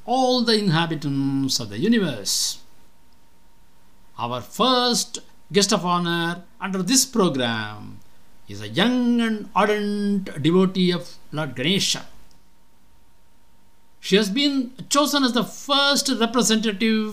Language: English